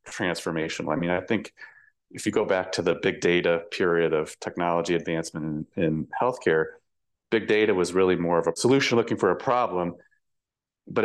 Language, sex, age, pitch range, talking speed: English, male, 30-49, 80-95 Hz, 180 wpm